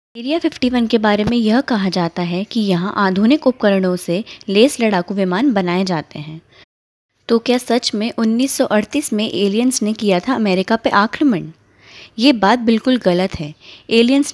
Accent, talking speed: native, 165 wpm